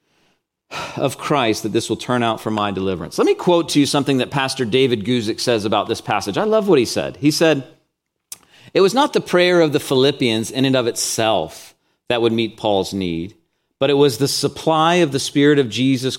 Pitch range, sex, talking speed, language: 125-175 Hz, male, 215 wpm, English